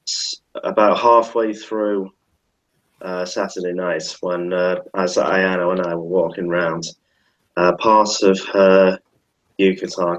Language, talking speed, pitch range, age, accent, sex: English, 120 wpm, 85-95 Hz, 20-39, British, male